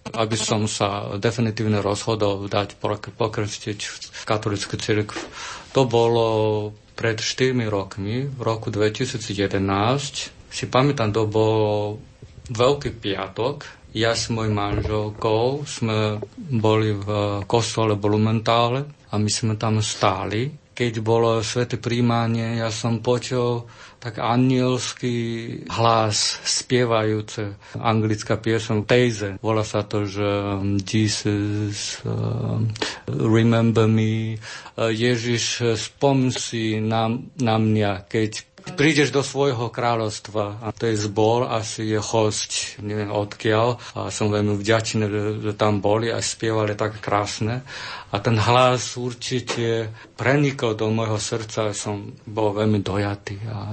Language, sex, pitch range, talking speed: Slovak, male, 105-120 Hz, 120 wpm